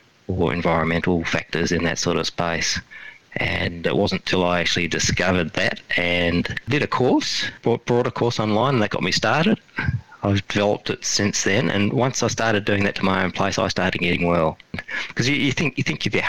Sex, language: male, English